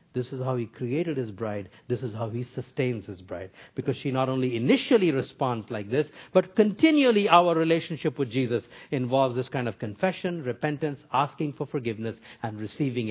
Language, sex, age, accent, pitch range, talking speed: English, male, 50-69, Indian, 125-170 Hz, 180 wpm